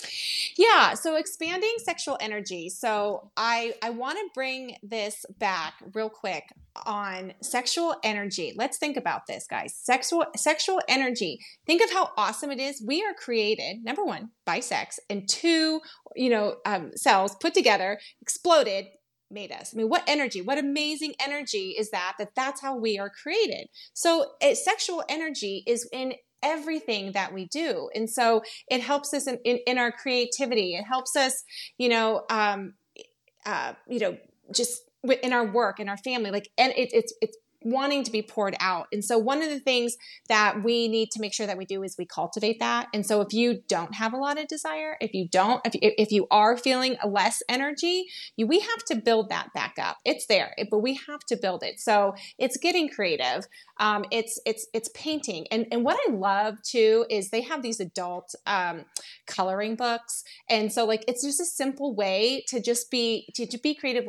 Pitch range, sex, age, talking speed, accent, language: 215-285 Hz, female, 30-49, 190 wpm, American, English